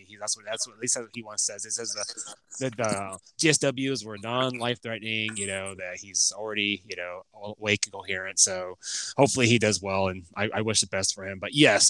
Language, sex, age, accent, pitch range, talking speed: English, male, 20-39, American, 110-140 Hz, 220 wpm